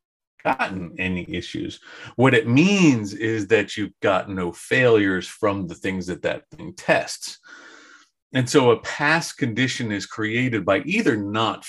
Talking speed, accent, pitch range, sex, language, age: 150 wpm, American, 95-135 Hz, male, English, 40-59